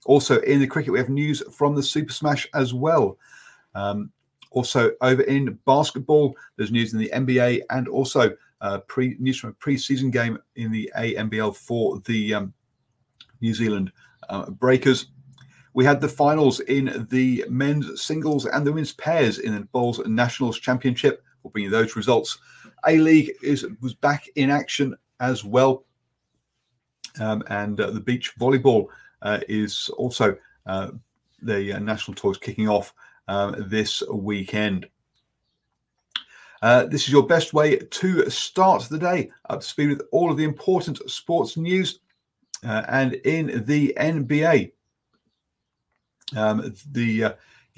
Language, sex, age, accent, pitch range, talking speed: English, male, 40-59, British, 115-145 Hz, 150 wpm